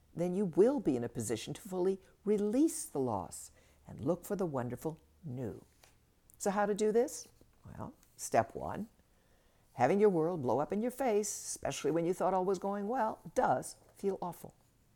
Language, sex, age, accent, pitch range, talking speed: English, female, 60-79, American, 135-205 Hz, 180 wpm